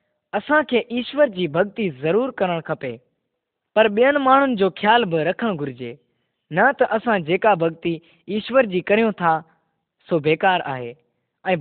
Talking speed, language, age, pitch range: 135 wpm, Persian, 20-39, 155-225 Hz